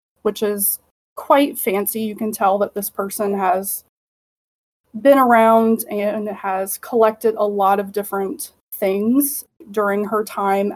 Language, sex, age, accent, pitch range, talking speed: English, female, 20-39, American, 195-230 Hz, 135 wpm